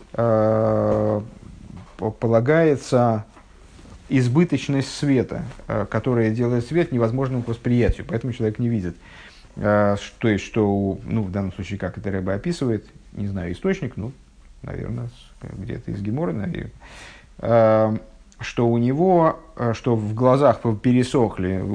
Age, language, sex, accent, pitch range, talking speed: 50-69, Russian, male, native, 110-145 Hz, 110 wpm